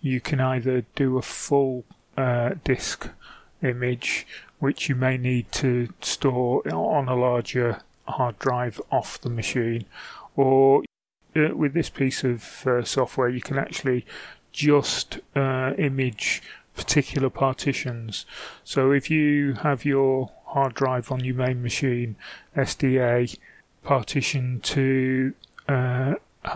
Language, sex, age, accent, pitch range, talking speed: English, male, 30-49, British, 125-140 Hz, 120 wpm